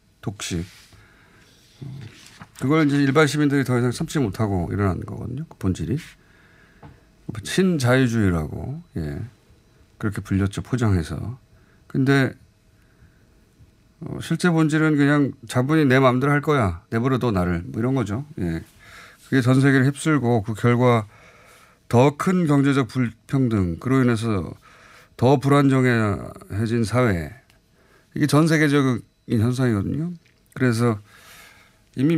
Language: Korean